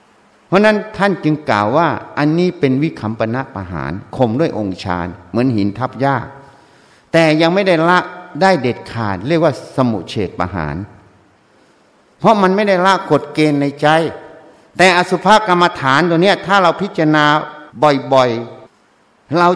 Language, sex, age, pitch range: Thai, male, 60-79, 115-165 Hz